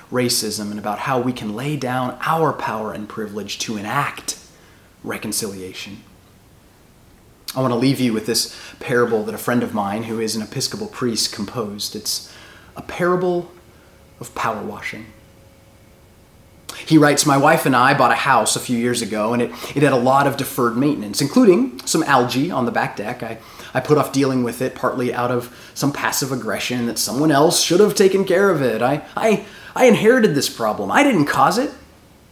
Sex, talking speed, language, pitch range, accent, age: male, 190 wpm, English, 110-140 Hz, American, 30-49